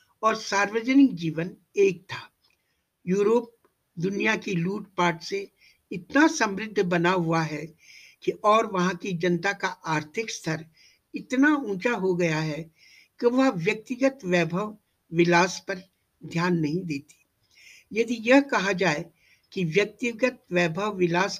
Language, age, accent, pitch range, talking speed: Hindi, 60-79, native, 170-230 Hz, 125 wpm